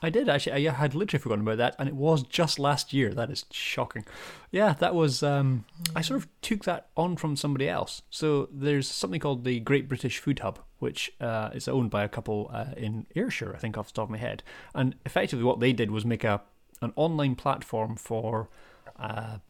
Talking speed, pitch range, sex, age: 215 wpm, 110-140 Hz, male, 30-49